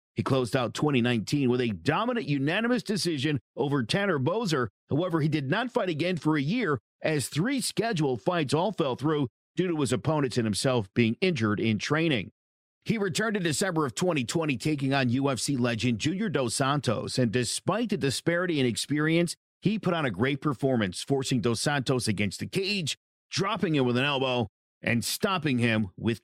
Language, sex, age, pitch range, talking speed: English, male, 50-69, 120-175 Hz, 180 wpm